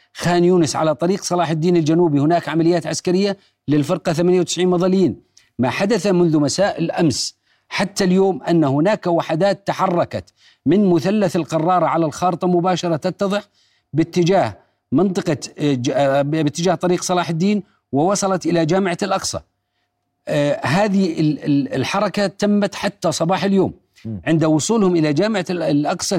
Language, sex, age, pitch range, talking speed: Arabic, male, 40-59, 160-195 Hz, 120 wpm